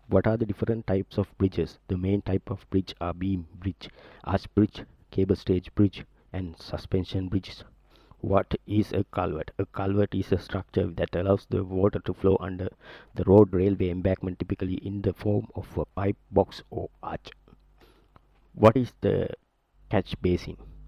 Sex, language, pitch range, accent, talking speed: male, English, 95-105 Hz, Indian, 165 wpm